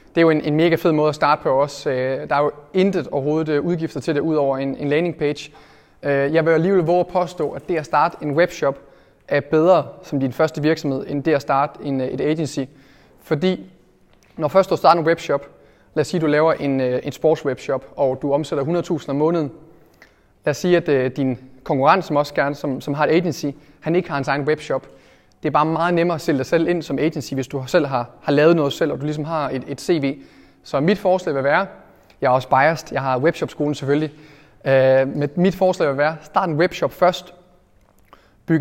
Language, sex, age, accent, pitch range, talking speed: Danish, male, 30-49, native, 140-165 Hz, 220 wpm